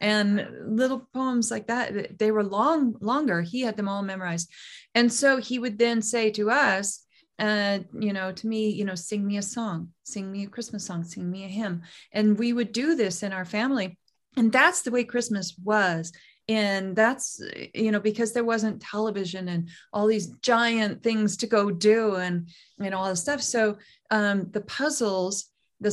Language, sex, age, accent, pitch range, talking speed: English, female, 30-49, American, 190-225 Hz, 190 wpm